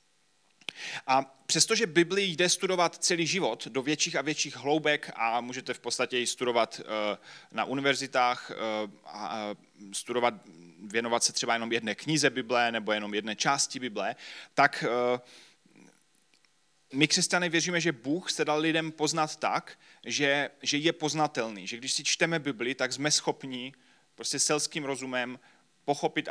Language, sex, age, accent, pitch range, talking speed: Czech, male, 30-49, native, 120-155 Hz, 140 wpm